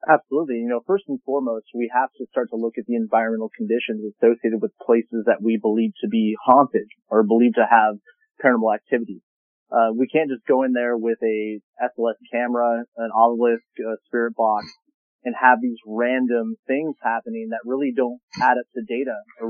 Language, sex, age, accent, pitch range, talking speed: English, male, 30-49, American, 115-140 Hz, 190 wpm